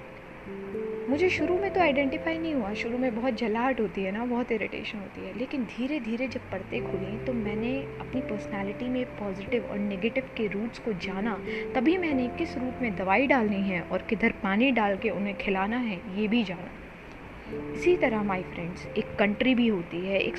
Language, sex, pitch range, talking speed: Hindi, female, 195-265 Hz, 190 wpm